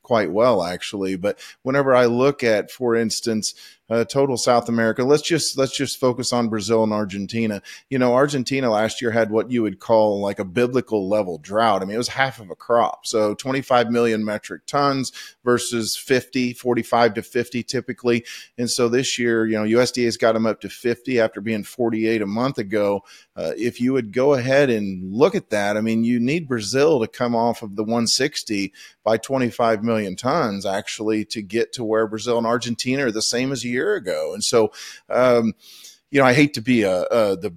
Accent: American